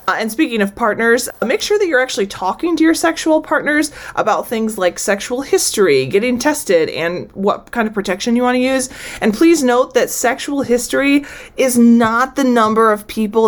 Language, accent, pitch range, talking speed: English, American, 200-280 Hz, 190 wpm